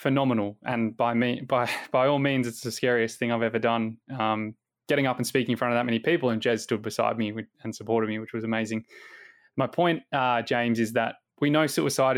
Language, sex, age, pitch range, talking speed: English, male, 20-39, 115-135 Hz, 225 wpm